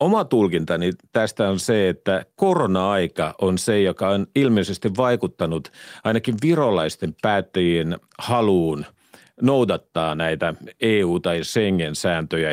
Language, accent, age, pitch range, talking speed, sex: Finnish, native, 50-69, 90-125 Hz, 105 wpm, male